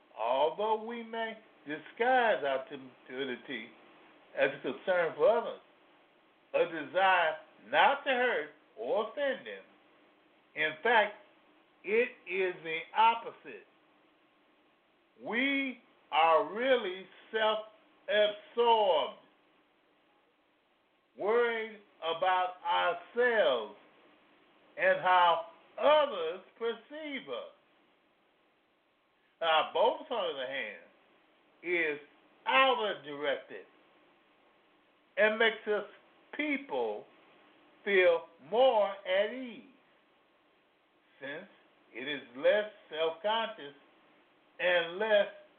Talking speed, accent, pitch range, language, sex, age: 80 wpm, American, 175-290 Hz, English, male, 50-69